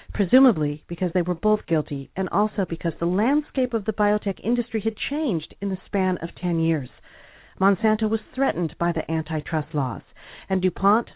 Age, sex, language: 40-59, female, English